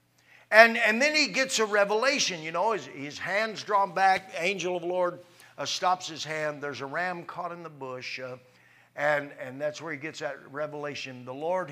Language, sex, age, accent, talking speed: English, male, 50-69, American, 205 wpm